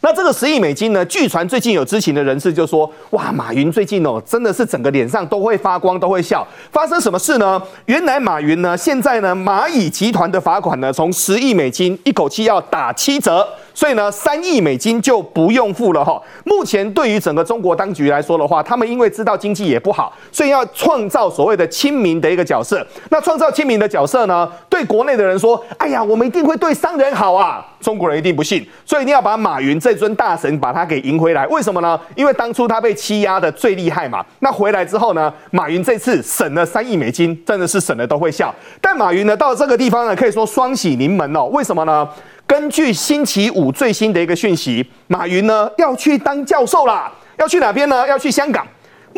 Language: Chinese